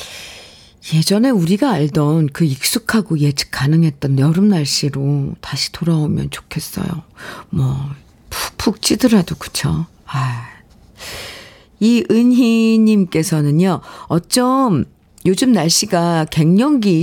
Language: Korean